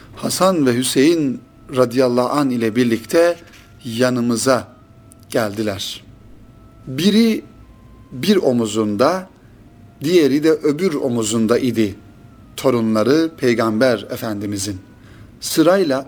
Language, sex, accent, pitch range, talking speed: Turkish, male, native, 110-130 Hz, 75 wpm